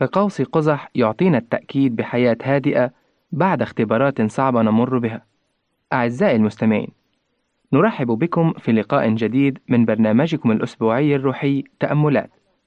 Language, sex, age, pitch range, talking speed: Arabic, male, 20-39, 120-160 Hz, 110 wpm